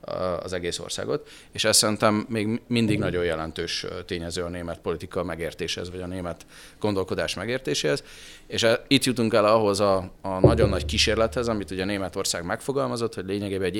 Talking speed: 160 wpm